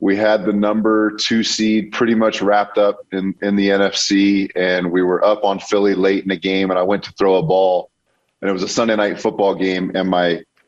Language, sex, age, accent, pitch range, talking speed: English, male, 30-49, American, 95-105 Hz, 230 wpm